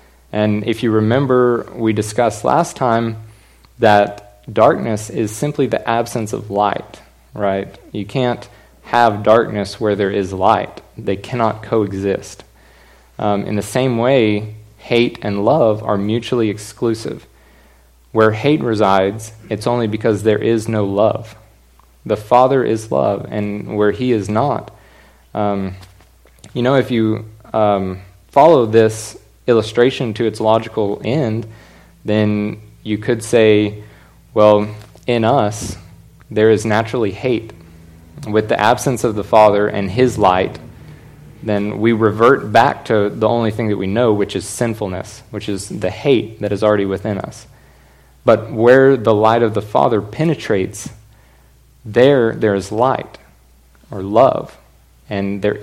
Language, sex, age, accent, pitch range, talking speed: English, male, 20-39, American, 100-115 Hz, 140 wpm